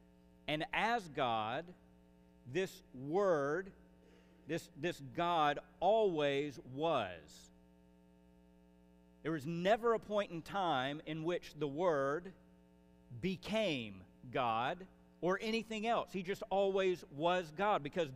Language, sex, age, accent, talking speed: English, male, 50-69, American, 105 wpm